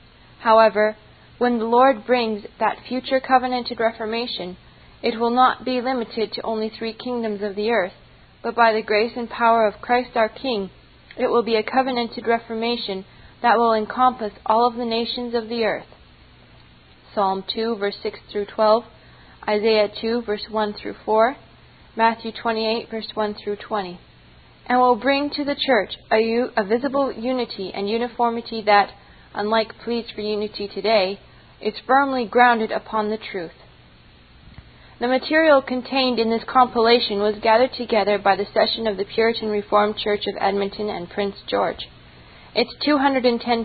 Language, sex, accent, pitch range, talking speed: English, female, American, 210-240 Hz, 155 wpm